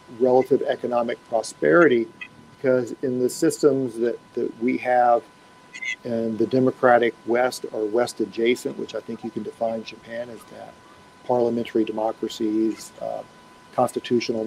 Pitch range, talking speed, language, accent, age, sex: 115-135 Hz, 130 wpm, English, American, 50-69, male